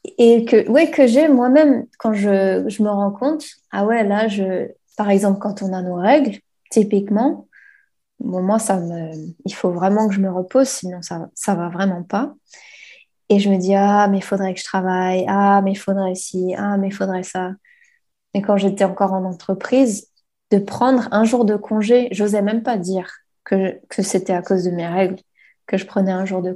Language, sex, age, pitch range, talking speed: English, female, 20-39, 185-220 Hz, 210 wpm